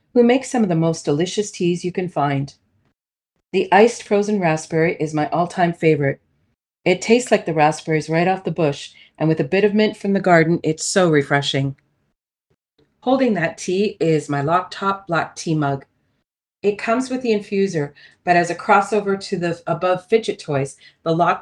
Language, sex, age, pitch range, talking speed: English, female, 40-59, 150-200 Hz, 180 wpm